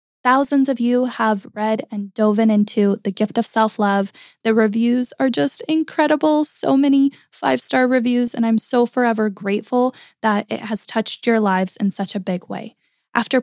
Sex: female